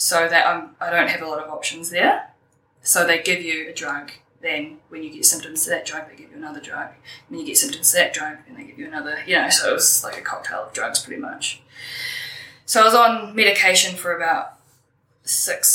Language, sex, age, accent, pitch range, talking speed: English, female, 10-29, Australian, 130-185 Hz, 240 wpm